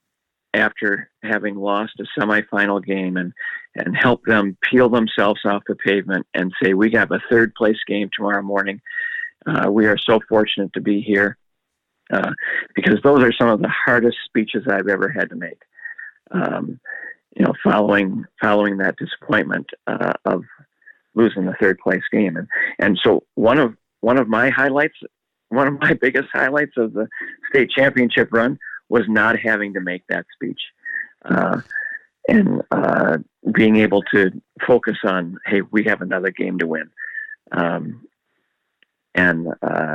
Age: 50-69